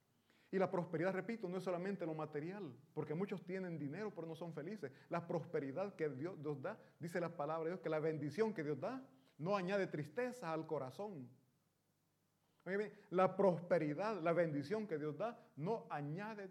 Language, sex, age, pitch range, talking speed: Italian, male, 30-49, 150-190 Hz, 175 wpm